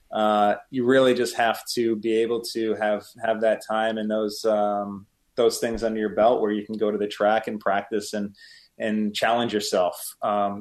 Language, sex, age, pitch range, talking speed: English, male, 20-39, 105-120 Hz, 200 wpm